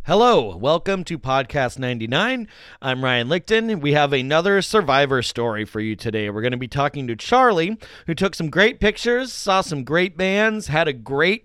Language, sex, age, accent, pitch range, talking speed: English, male, 30-49, American, 115-160 Hz, 185 wpm